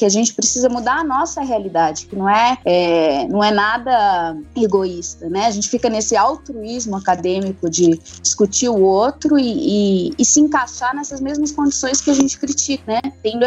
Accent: Brazilian